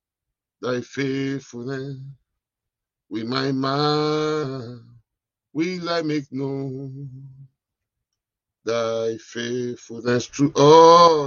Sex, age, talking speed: male, 50-69, 70 wpm